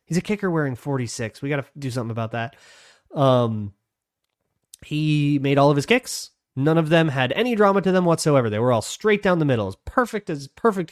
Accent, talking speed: American, 215 wpm